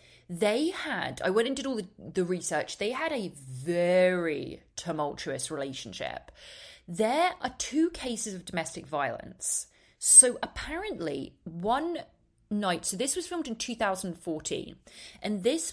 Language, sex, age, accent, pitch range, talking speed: English, female, 30-49, British, 170-255 Hz, 135 wpm